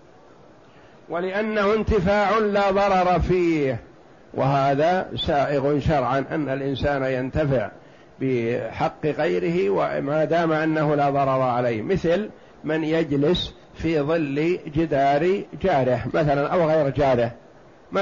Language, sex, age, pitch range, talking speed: Arabic, male, 50-69, 140-185 Hz, 105 wpm